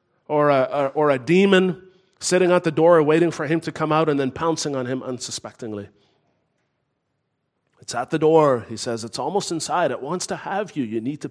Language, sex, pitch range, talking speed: English, male, 135-185 Hz, 195 wpm